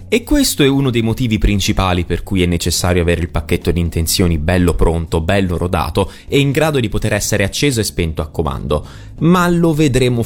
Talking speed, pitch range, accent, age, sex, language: 200 wpm, 85-125 Hz, native, 30-49, male, Italian